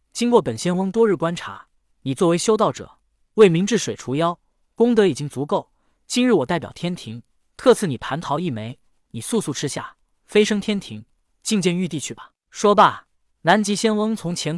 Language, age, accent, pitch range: Chinese, 20-39, native, 135-200 Hz